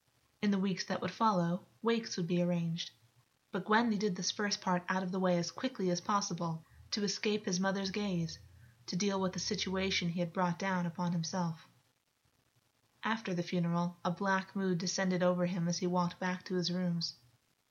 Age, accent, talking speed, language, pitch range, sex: 20-39, American, 190 wpm, English, 175-210 Hz, female